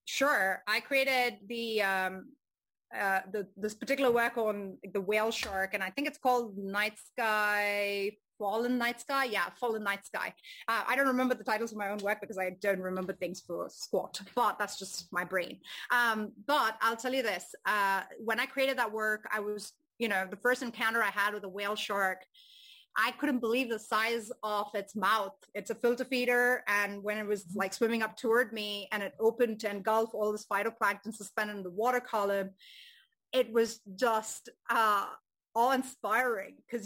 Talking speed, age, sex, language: 185 wpm, 30-49, female, English